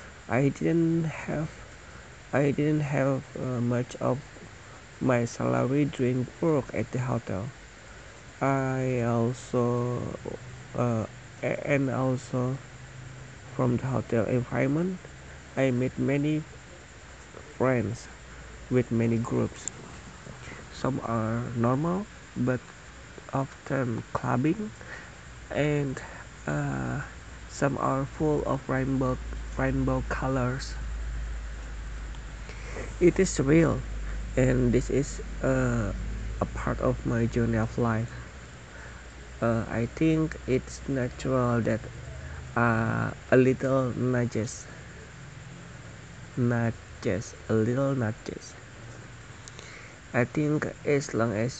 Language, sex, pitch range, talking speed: English, male, 110-135 Hz, 95 wpm